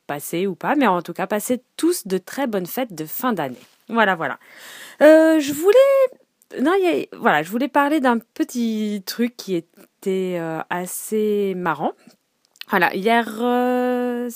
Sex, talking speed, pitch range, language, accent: female, 165 wpm, 160-225 Hz, French, French